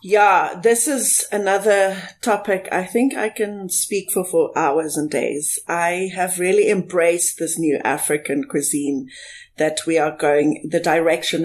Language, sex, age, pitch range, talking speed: English, female, 30-49, 170-220 Hz, 150 wpm